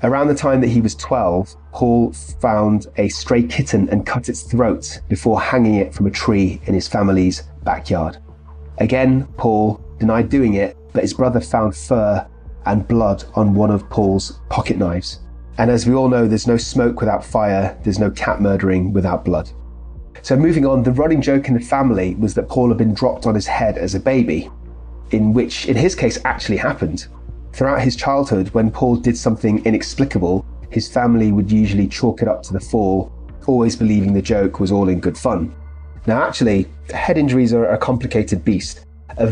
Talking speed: 190 wpm